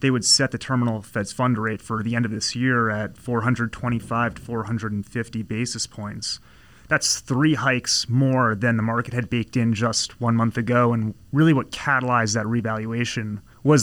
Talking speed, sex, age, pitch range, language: 180 wpm, male, 30-49, 115-145 Hz, English